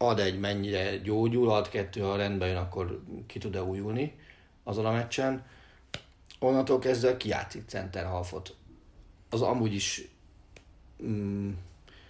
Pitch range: 95-110 Hz